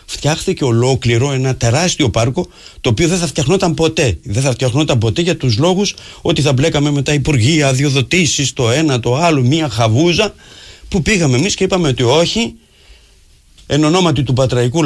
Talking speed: 170 wpm